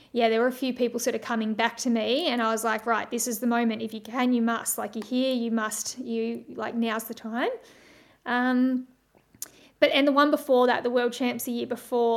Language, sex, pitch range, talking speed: English, female, 235-260 Hz, 240 wpm